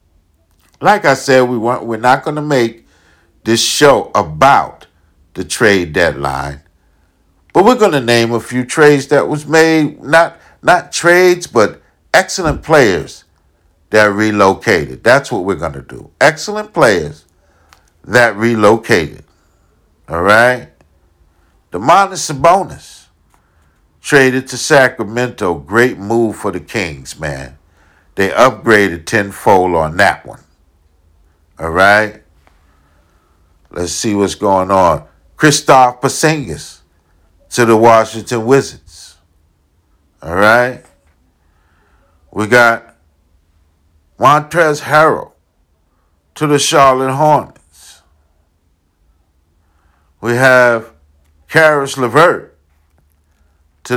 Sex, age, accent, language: male, 60-79, American, English